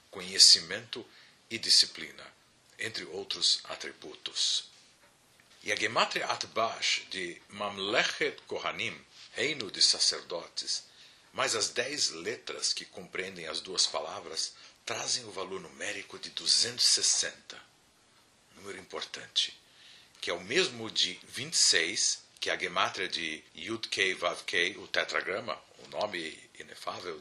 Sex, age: male, 50-69